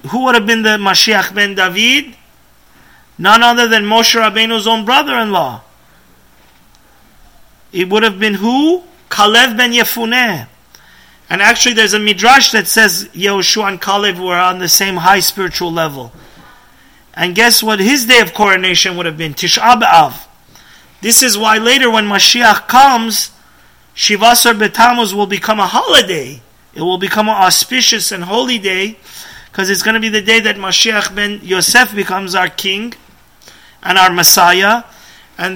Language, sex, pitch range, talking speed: English, male, 190-230 Hz, 150 wpm